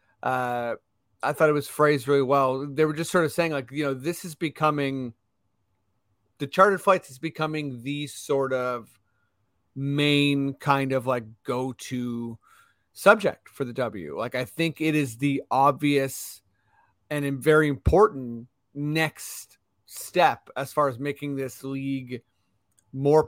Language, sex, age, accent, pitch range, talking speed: English, male, 30-49, American, 120-150 Hz, 145 wpm